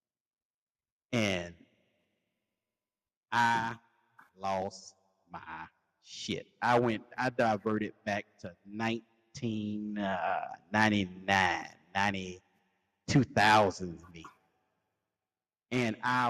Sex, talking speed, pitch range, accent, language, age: male, 45 wpm, 100-120 Hz, American, English, 30-49